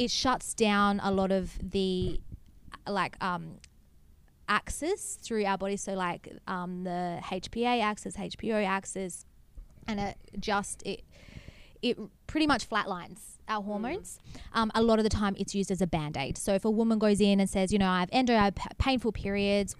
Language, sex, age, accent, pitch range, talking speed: English, female, 20-39, Australian, 180-210 Hz, 175 wpm